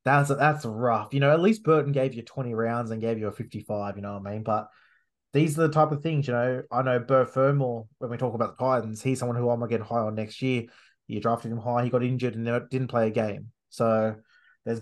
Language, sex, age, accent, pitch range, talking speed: English, male, 20-39, Australian, 115-140 Hz, 260 wpm